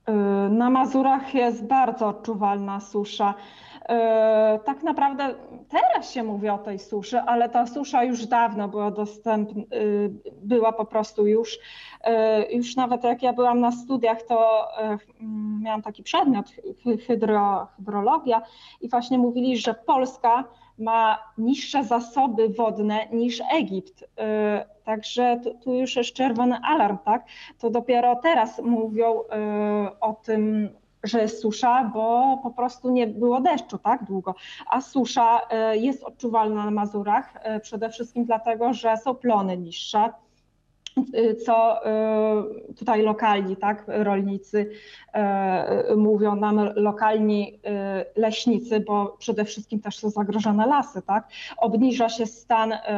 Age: 20-39